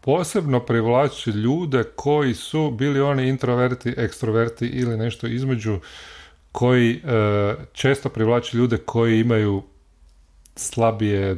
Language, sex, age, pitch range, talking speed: Croatian, male, 40-59, 110-140 Hz, 105 wpm